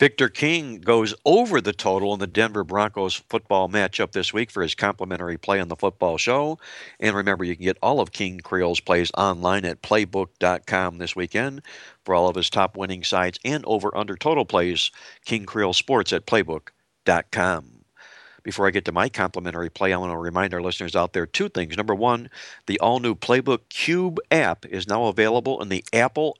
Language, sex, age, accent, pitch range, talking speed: English, male, 60-79, American, 90-105 Hz, 190 wpm